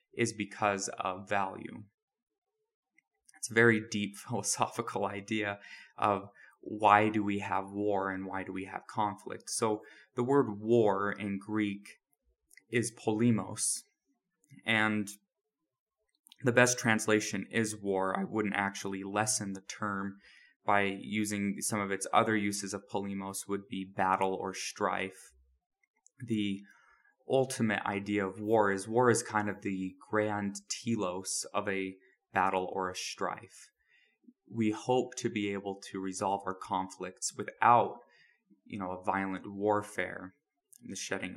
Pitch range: 95-110 Hz